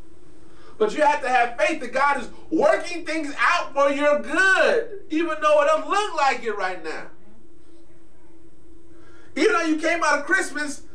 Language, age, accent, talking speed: English, 30-49, American, 170 wpm